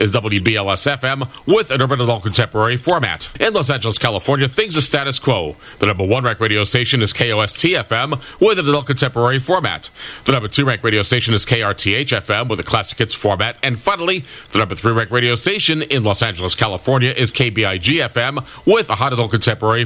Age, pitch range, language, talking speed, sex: 40-59, 110-140 Hz, English, 185 wpm, male